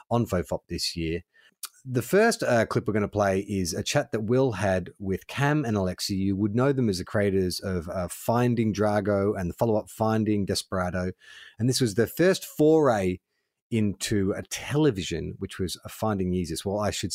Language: English